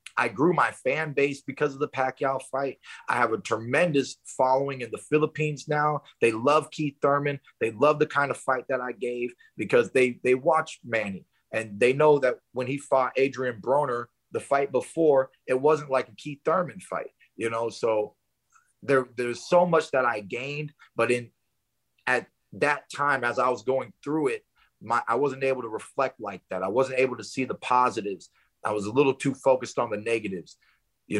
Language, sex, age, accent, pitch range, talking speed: English, male, 30-49, American, 120-145 Hz, 195 wpm